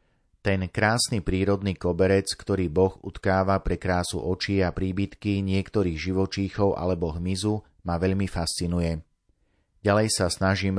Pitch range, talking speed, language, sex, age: 90-100 Hz, 120 wpm, Slovak, male, 30-49